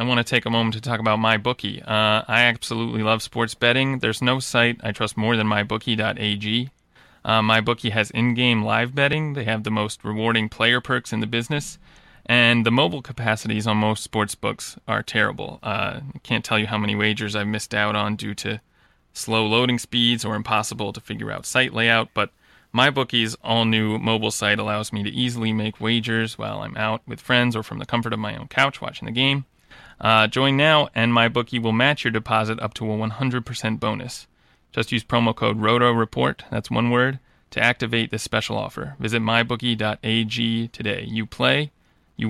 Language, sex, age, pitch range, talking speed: English, male, 30-49, 110-125 Hz, 190 wpm